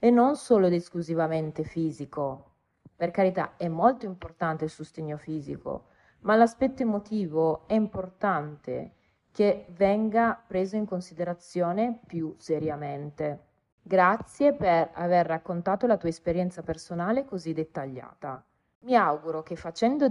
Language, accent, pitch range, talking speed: Italian, native, 160-220 Hz, 120 wpm